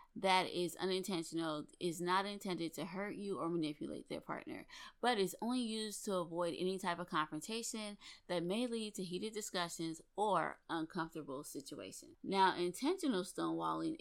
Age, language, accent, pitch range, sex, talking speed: 20-39, English, American, 165-195 Hz, female, 150 wpm